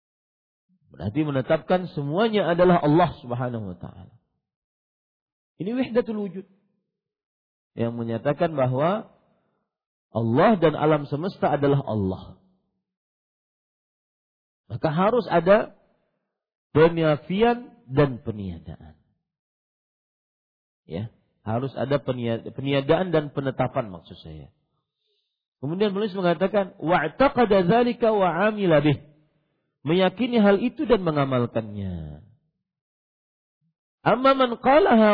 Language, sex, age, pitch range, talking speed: Malay, male, 50-69, 140-200 Hz, 85 wpm